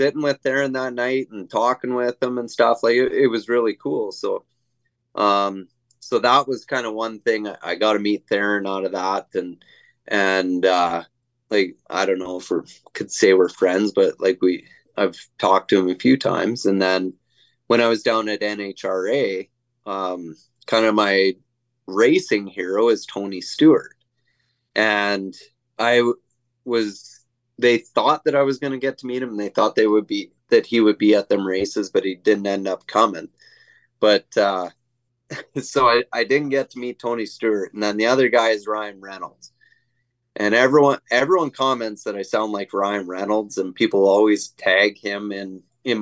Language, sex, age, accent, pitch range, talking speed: English, male, 20-39, American, 100-125 Hz, 190 wpm